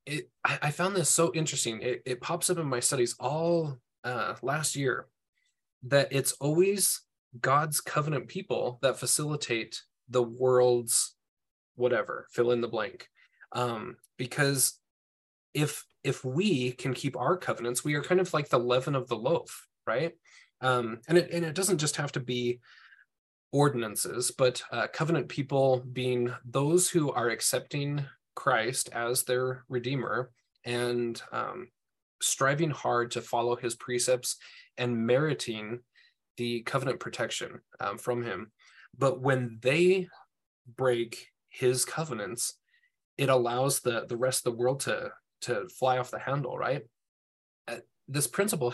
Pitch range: 120-150 Hz